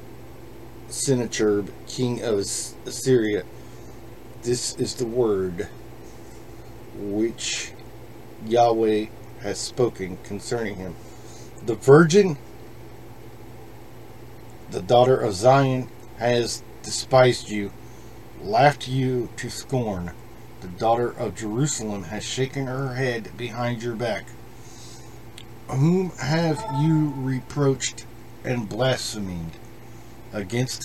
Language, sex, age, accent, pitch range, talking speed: English, male, 40-59, American, 115-130 Hz, 90 wpm